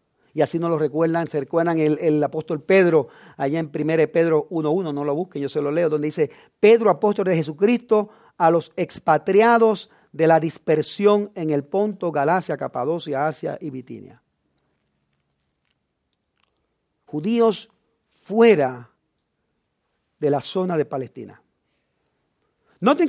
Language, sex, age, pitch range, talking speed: English, male, 50-69, 150-205 Hz, 135 wpm